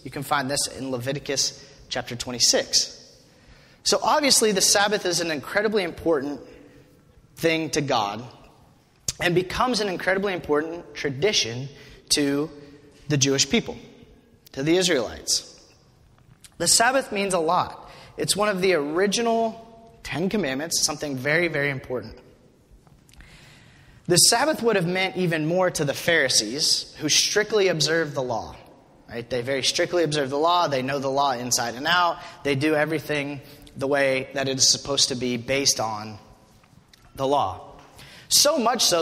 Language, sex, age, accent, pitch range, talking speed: English, male, 30-49, American, 140-180 Hz, 145 wpm